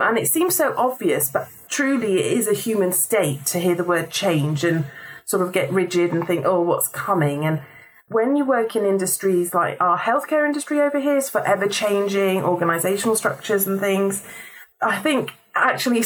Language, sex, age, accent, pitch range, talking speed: English, female, 30-49, British, 195-255 Hz, 185 wpm